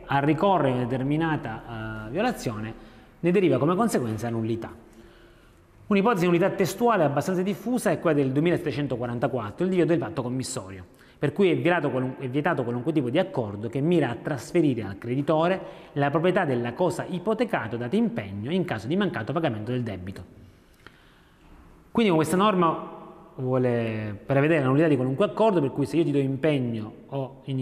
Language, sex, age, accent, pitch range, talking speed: Italian, male, 30-49, native, 125-170 Hz, 170 wpm